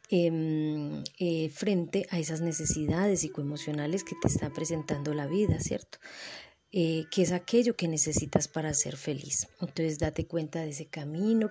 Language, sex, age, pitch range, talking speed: Spanish, female, 30-49, 155-190 Hz, 150 wpm